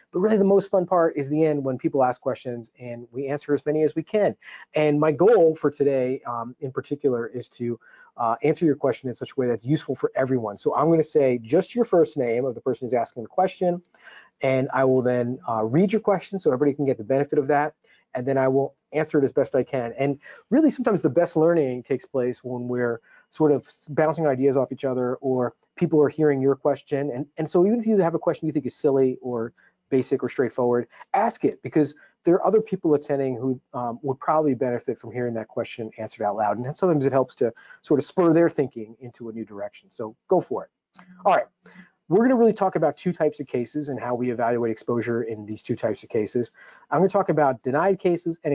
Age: 30-49